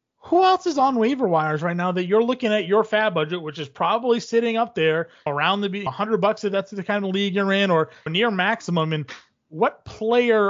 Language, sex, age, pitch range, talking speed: English, male, 30-49, 165-215 Hz, 230 wpm